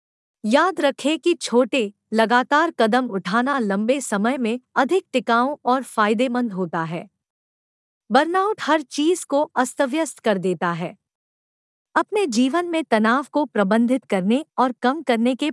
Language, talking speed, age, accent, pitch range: Hindi, 135 wpm, 50-69, native, 215-290 Hz